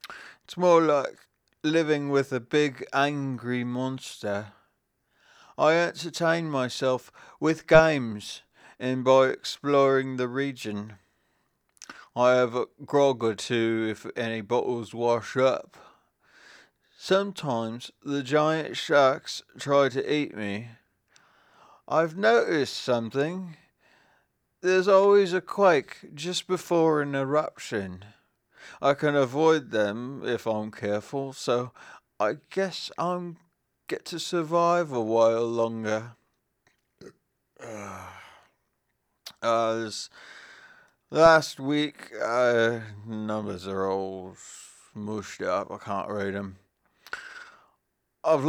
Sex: male